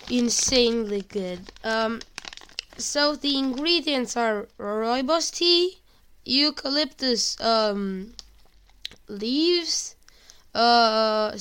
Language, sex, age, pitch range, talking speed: Romanian, female, 10-29, 210-255 Hz, 70 wpm